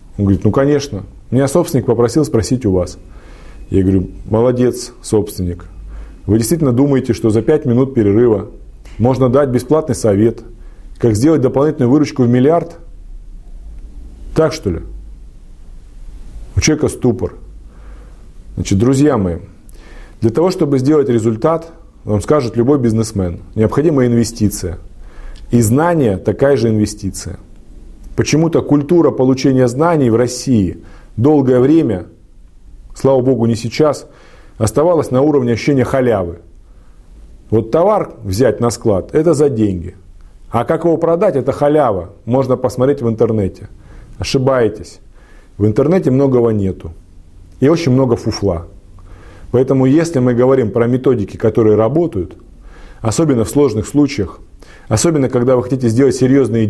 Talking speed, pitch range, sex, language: 125 wpm, 95-135 Hz, male, Russian